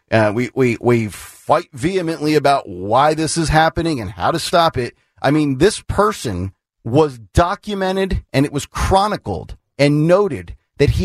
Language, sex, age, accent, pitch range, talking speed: English, male, 40-59, American, 125-195 Hz, 165 wpm